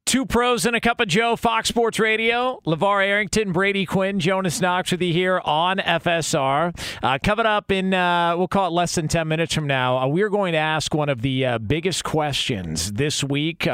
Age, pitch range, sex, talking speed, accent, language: 40-59, 120-160 Hz, male, 210 wpm, American, English